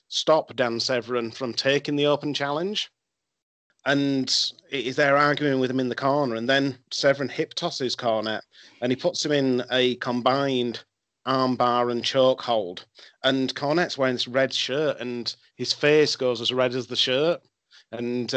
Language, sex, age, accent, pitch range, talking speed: English, male, 30-49, British, 120-140 Hz, 165 wpm